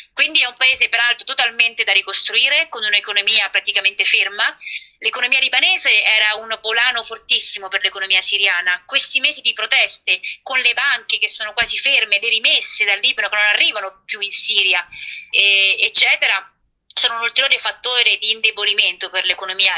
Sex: female